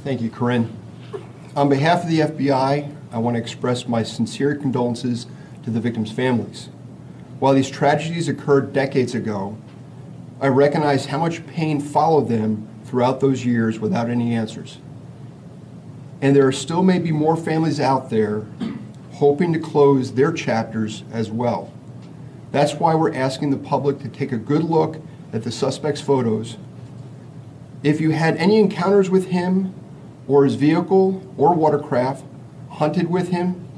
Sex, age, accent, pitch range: male, 40-59, American, 130-160 Hz